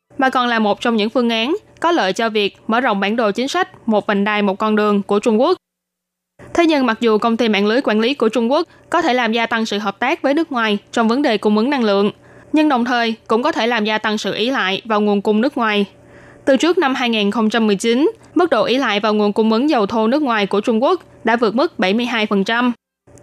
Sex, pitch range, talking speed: female, 210-260 Hz, 255 wpm